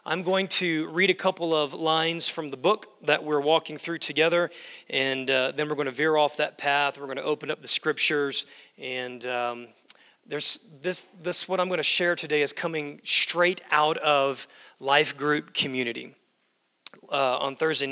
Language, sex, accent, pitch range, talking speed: English, male, American, 140-170 Hz, 185 wpm